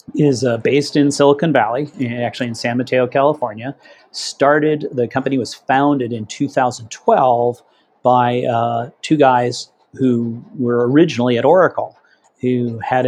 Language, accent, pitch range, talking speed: English, American, 120-140 Hz, 135 wpm